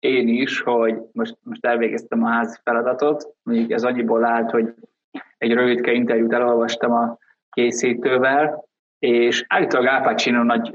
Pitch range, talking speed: 115-150 Hz, 135 wpm